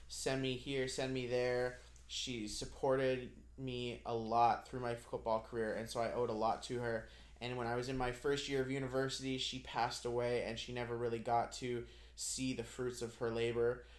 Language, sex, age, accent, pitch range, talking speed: English, male, 20-39, American, 110-125 Hz, 205 wpm